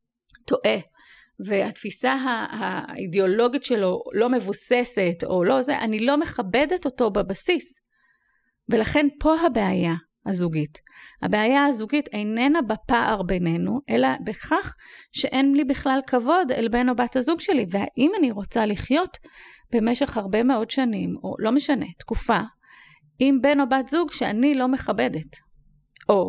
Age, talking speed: 30-49, 130 wpm